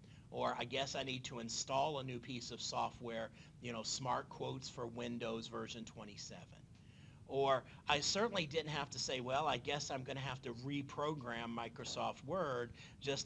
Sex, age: male, 40-59